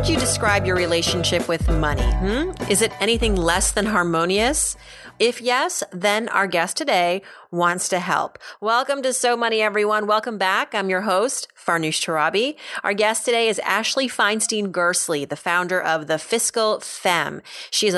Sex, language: female, English